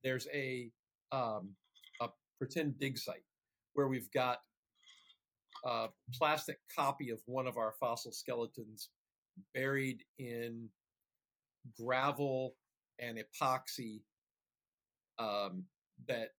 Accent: American